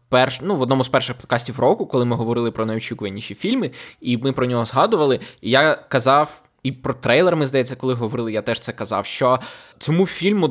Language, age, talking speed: Ukrainian, 20-39, 205 wpm